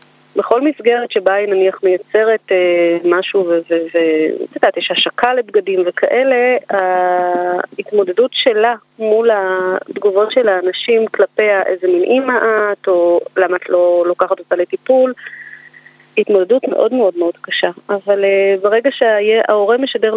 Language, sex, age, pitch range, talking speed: Hebrew, female, 30-49, 190-245 Hz, 135 wpm